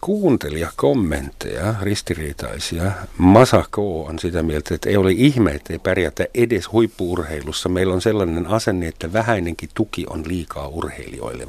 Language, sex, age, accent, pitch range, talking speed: Finnish, male, 50-69, native, 80-105 Hz, 135 wpm